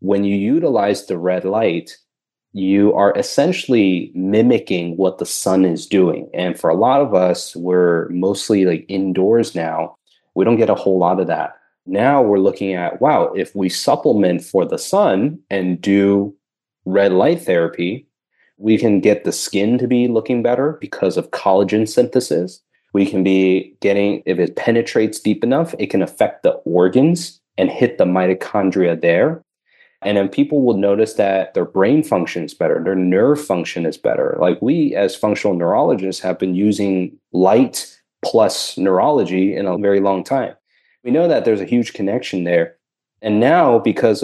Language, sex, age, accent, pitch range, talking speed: English, male, 30-49, American, 95-115 Hz, 170 wpm